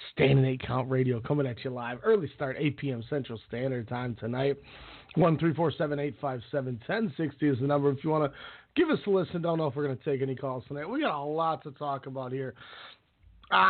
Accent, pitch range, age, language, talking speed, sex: American, 135-175 Hz, 30-49, English, 235 wpm, male